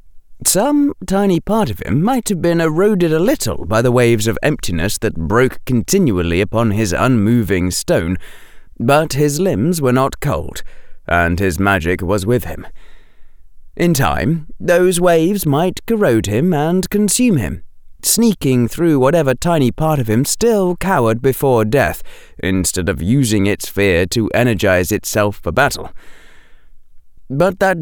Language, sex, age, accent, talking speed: English, male, 20-39, British, 145 wpm